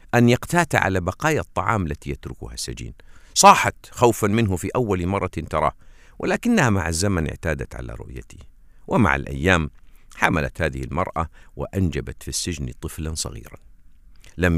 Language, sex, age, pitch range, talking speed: Arabic, male, 50-69, 75-115 Hz, 130 wpm